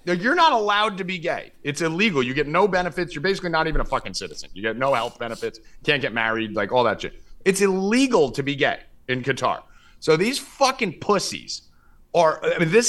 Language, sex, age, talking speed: English, male, 30-49, 215 wpm